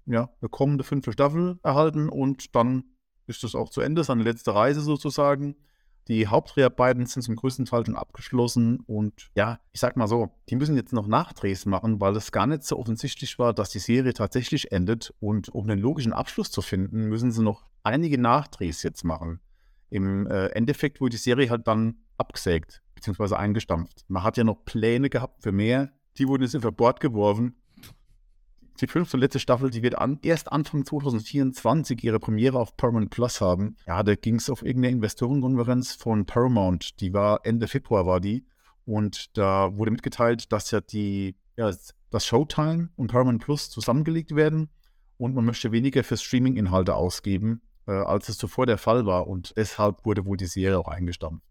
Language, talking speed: German, 180 wpm